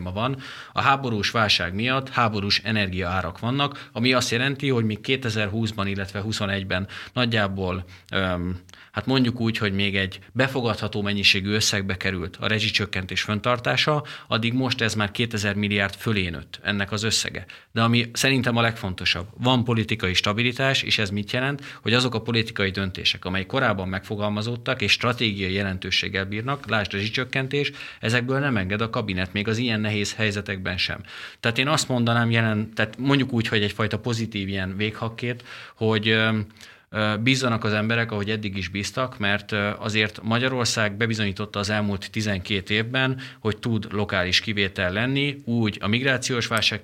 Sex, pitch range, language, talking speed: male, 100-120 Hz, Hungarian, 150 wpm